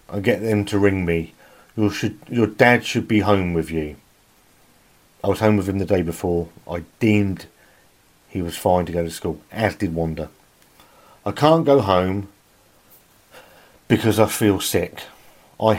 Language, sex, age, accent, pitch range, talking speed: English, male, 40-59, British, 90-120 Hz, 165 wpm